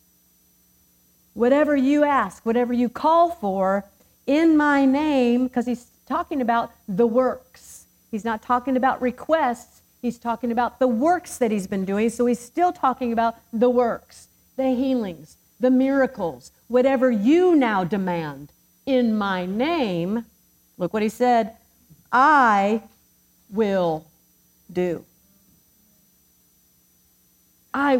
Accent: American